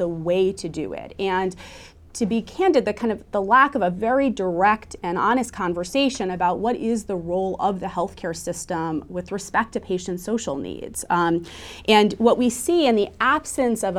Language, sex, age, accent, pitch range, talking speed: English, female, 30-49, American, 180-225 Hz, 195 wpm